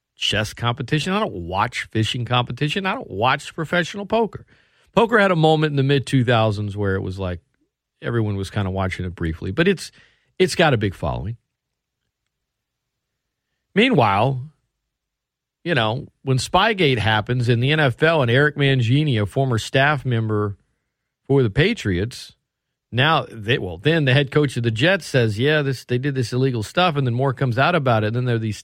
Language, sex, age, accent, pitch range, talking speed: English, male, 40-59, American, 120-170 Hz, 180 wpm